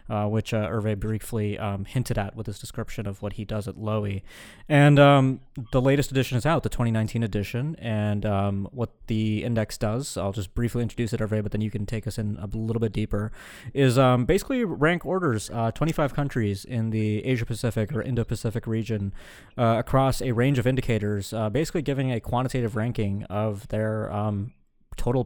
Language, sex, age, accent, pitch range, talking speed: English, male, 20-39, American, 105-125 Hz, 190 wpm